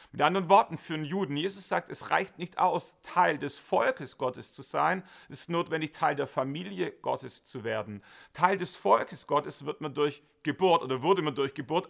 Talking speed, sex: 200 wpm, male